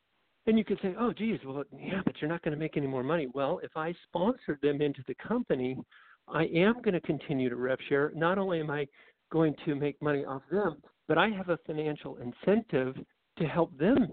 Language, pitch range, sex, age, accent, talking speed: English, 135-170 Hz, male, 50-69, American, 220 wpm